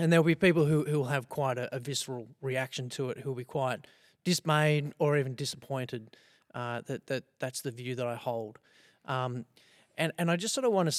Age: 30-49